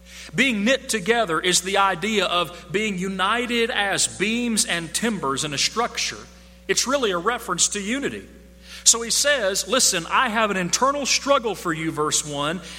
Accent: American